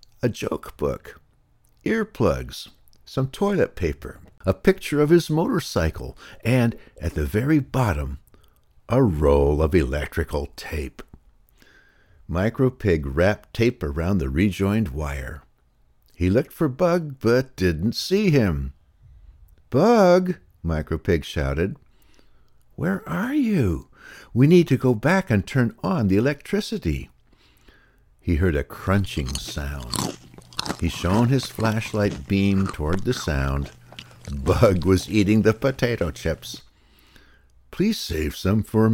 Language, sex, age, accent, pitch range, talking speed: English, male, 60-79, American, 75-115 Hz, 120 wpm